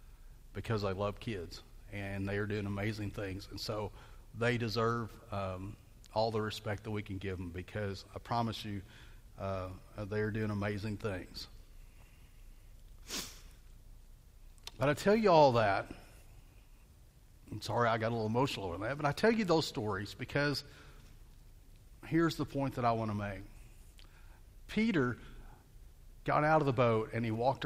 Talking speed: 155 wpm